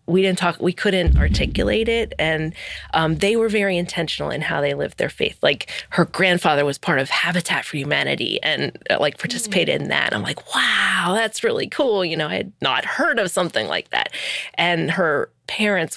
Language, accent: English, American